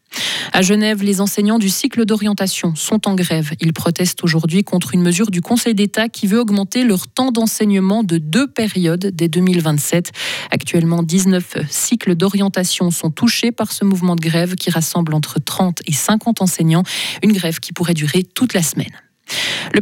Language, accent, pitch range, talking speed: French, French, 165-205 Hz, 175 wpm